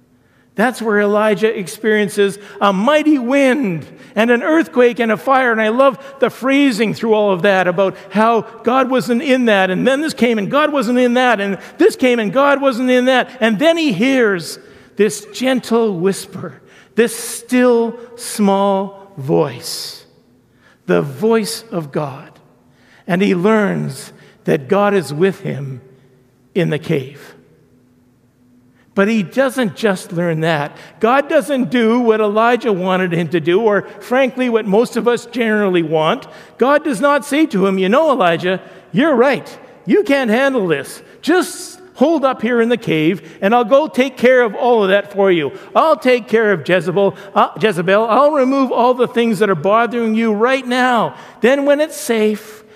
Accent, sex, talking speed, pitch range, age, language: American, male, 170 wpm, 195-250 Hz, 50-69, English